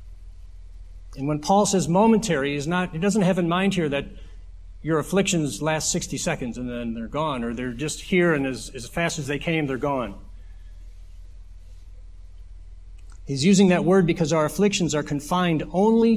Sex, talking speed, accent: male, 165 wpm, American